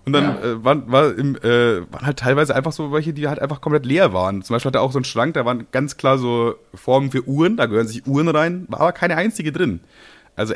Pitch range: 100-140 Hz